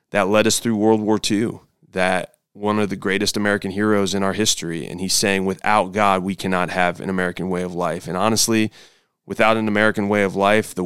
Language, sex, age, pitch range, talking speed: English, male, 30-49, 95-110 Hz, 215 wpm